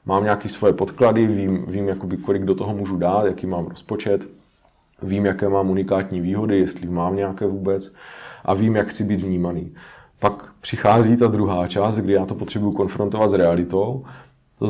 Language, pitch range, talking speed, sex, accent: Czech, 95-105 Hz, 175 wpm, male, native